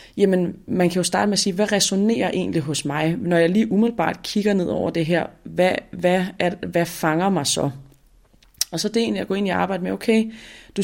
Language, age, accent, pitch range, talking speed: Danish, 30-49, native, 160-200 Hz, 240 wpm